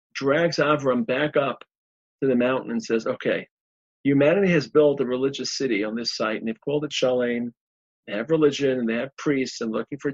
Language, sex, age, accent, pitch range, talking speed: English, male, 40-59, American, 110-145 Hz, 200 wpm